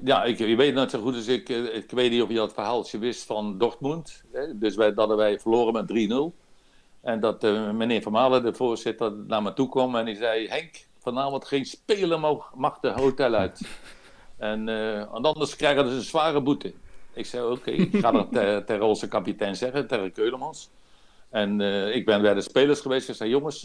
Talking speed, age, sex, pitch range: 220 wpm, 60-79, male, 105-140 Hz